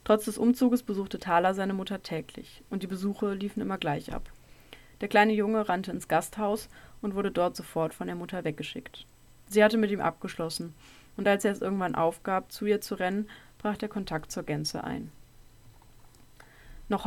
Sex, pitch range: female, 175-205 Hz